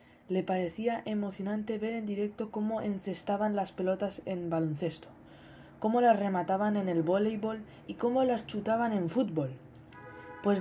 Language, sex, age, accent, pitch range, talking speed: Spanish, female, 20-39, Spanish, 180-220 Hz, 140 wpm